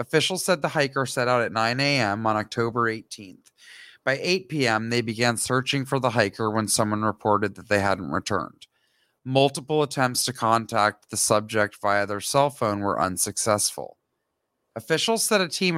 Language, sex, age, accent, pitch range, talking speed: English, male, 40-59, American, 120-185 Hz, 165 wpm